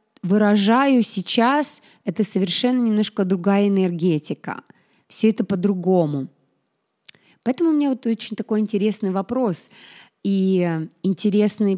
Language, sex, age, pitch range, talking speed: Russian, female, 20-39, 170-215 Hz, 100 wpm